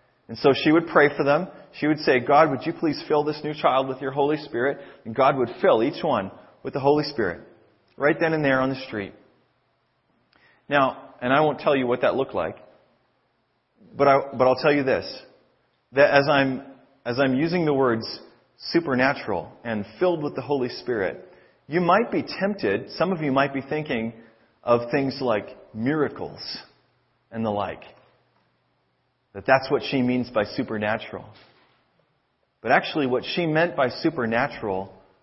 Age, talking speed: 30-49, 175 wpm